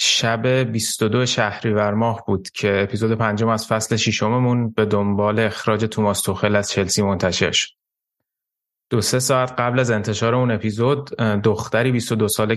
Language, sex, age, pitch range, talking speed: Persian, male, 20-39, 100-110 Hz, 145 wpm